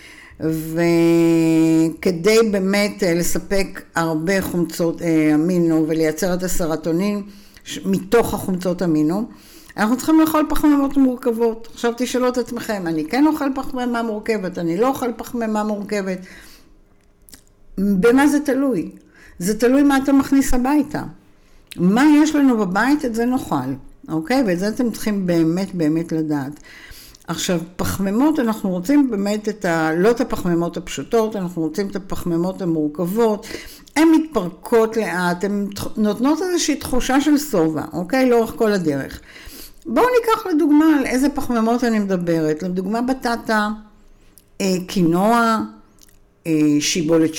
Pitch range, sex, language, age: 170-245 Hz, female, Hebrew, 60-79